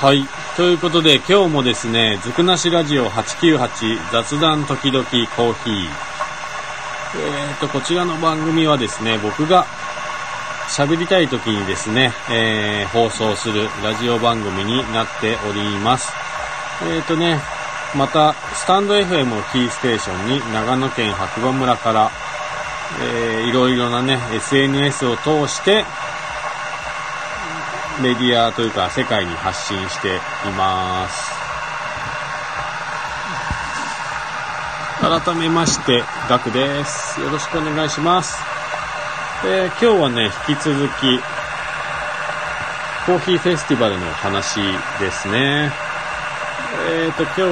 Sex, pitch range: male, 115-155 Hz